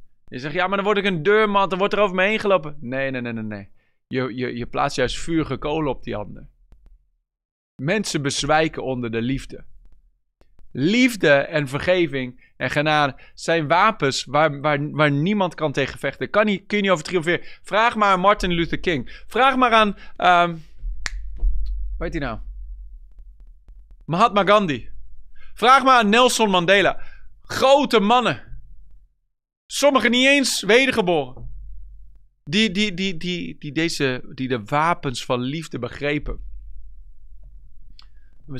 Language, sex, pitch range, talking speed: Dutch, male, 120-195 Hz, 140 wpm